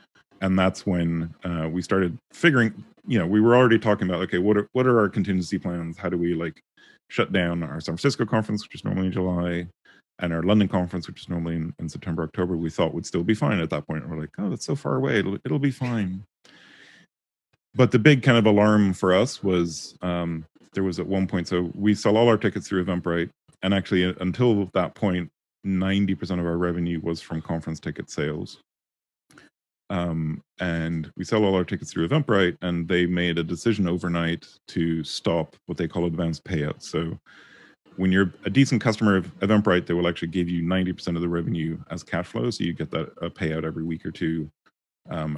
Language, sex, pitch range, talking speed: English, male, 85-100 Hz, 210 wpm